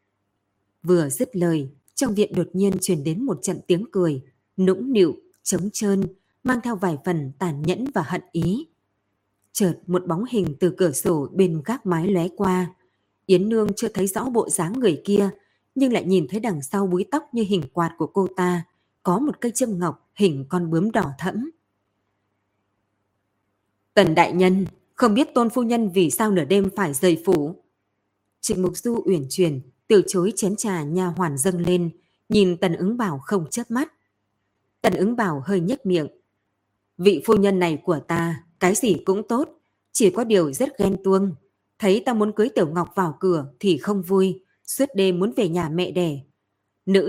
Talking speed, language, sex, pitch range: 185 wpm, Vietnamese, female, 165-205 Hz